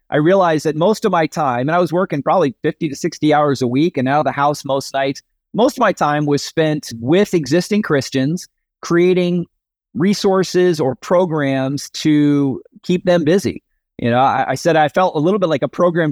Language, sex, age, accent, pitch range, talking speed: English, male, 30-49, American, 135-175 Hz, 205 wpm